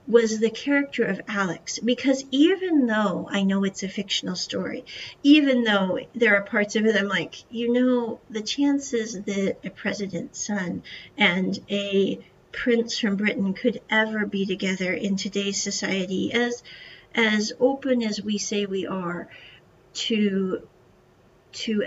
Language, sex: English, female